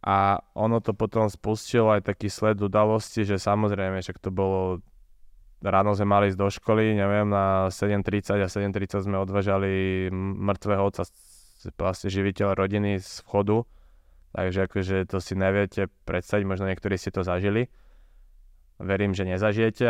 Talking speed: 145 wpm